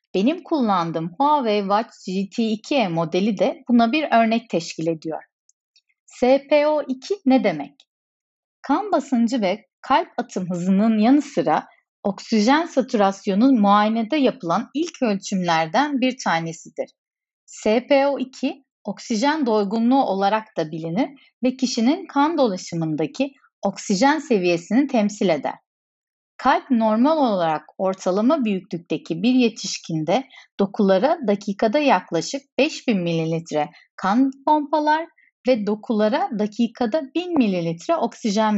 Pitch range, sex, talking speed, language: 190-270 Hz, female, 100 wpm, Turkish